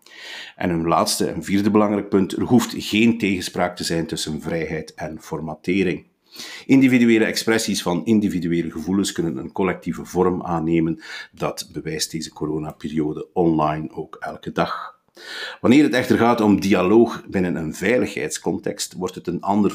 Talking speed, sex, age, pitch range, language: 145 wpm, male, 50-69, 85-105 Hz, Dutch